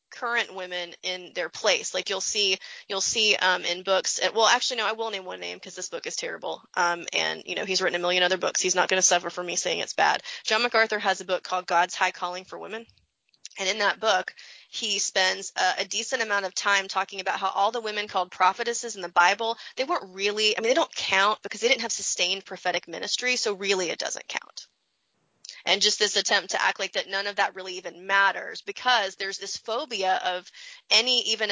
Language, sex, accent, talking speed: English, female, American, 230 wpm